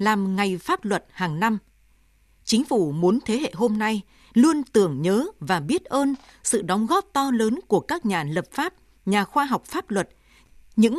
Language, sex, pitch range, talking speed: Vietnamese, female, 195-275 Hz, 190 wpm